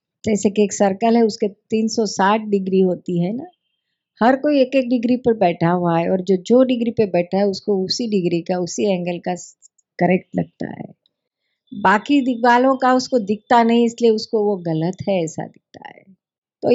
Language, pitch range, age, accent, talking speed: Hindi, 185-235 Hz, 50-69, native, 185 wpm